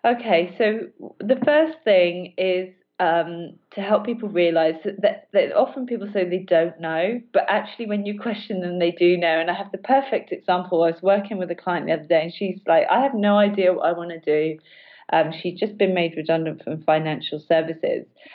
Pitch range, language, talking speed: 175-230 Hz, English, 210 wpm